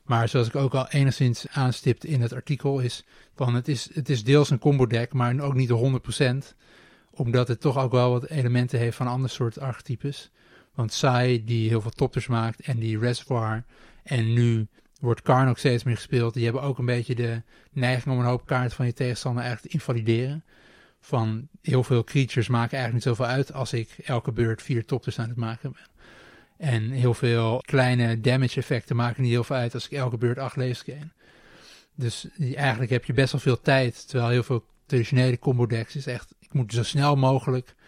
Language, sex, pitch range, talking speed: Dutch, male, 115-135 Hz, 205 wpm